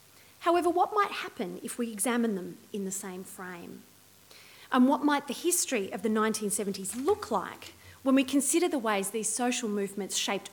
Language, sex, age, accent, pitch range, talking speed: English, female, 30-49, Australian, 200-260 Hz, 175 wpm